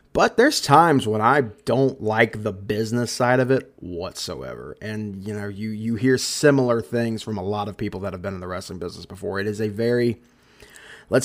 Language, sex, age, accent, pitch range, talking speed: English, male, 20-39, American, 105-125 Hz, 210 wpm